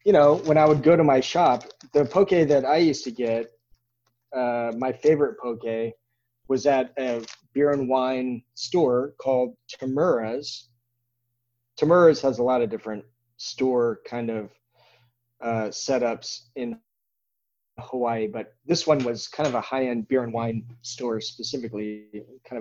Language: English